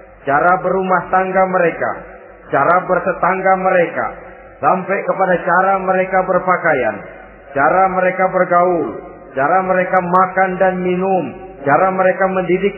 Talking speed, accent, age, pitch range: 110 wpm, native, 40-59, 155-235 Hz